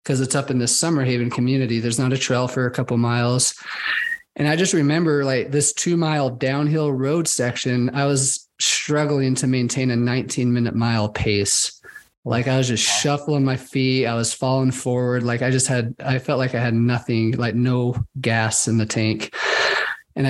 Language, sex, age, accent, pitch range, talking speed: English, male, 30-49, American, 120-140 Hz, 185 wpm